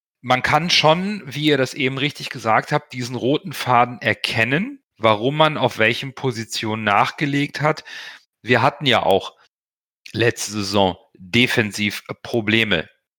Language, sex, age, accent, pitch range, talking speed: German, male, 40-59, German, 110-135 Hz, 130 wpm